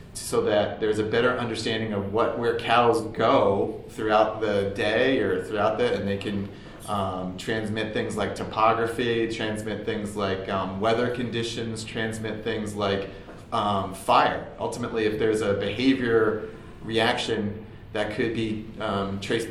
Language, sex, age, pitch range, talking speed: English, male, 30-49, 100-115 Hz, 145 wpm